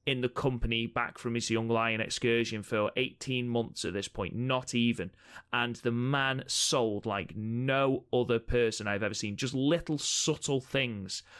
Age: 30-49